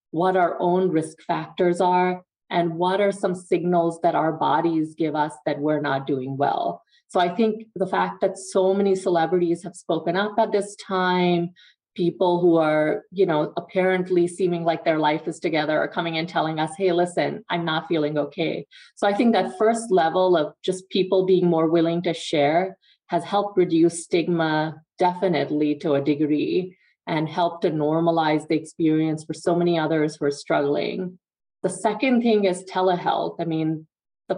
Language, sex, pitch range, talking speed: English, female, 155-185 Hz, 180 wpm